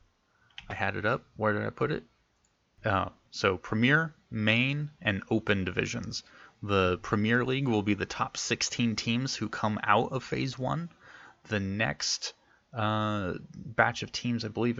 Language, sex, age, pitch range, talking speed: English, male, 20-39, 95-115 Hz, 160 wpm